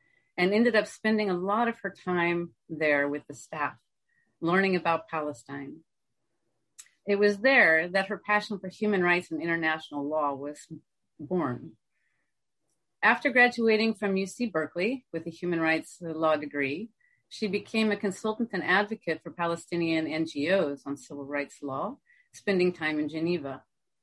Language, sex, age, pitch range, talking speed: English, female, 40-59, 155-200 Hz, 145 wpm